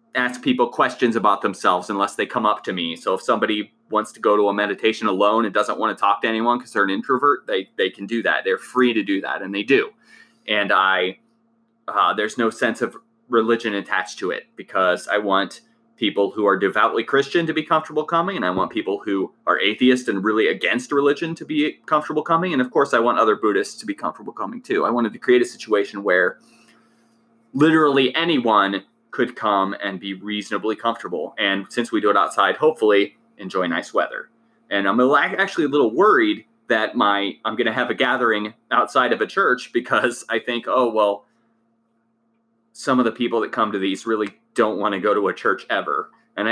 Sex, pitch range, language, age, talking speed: male, 105-165 Hz, English, 30-49, 210 wpm